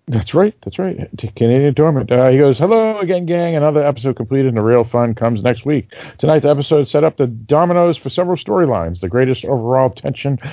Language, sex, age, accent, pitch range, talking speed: English, male, 50-69, American, 125-165 Hz, 205 wpm